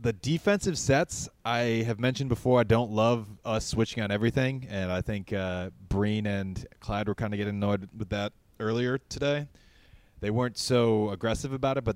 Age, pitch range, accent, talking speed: 30-49, 95-125 Hz, American, 185 wpm